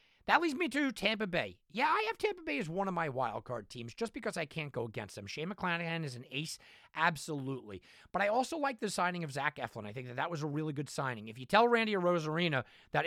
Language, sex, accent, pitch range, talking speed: English, male, American, 140-180 Hz, 255 wpm